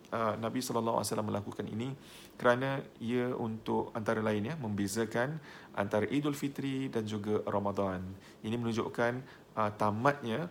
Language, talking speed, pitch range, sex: Malay, 110 wpm, 105-120 Hz, male